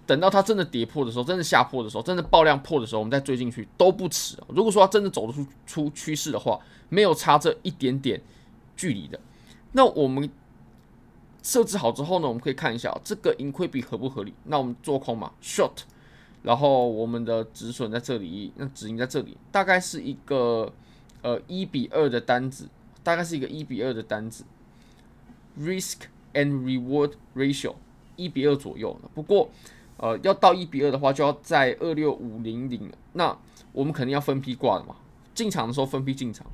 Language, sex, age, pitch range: Chinese, male, 20-39, 120-170 Hz